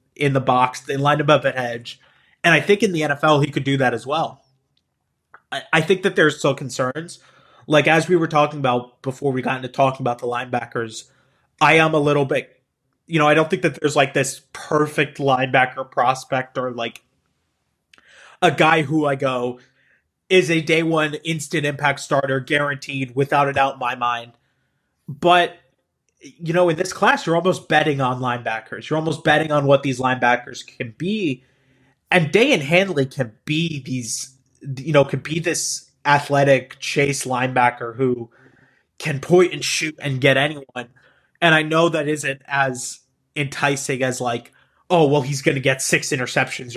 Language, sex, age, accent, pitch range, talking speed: English, male, 20-39, American, 130-155 Hz, 180 wpm